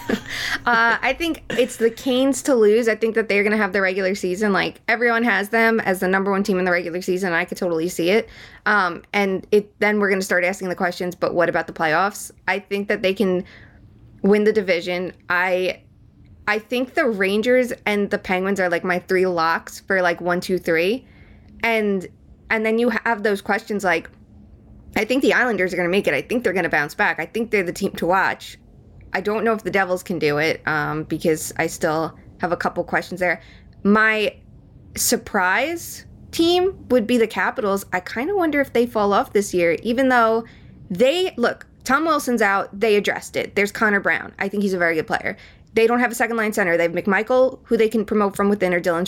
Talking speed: 220 wpm